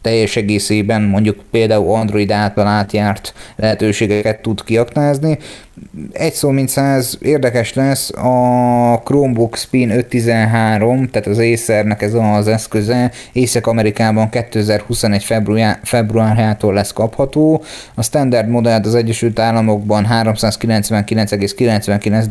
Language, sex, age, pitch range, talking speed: Hungarian, male, 30-49, 105-120 Hz, 105 wpm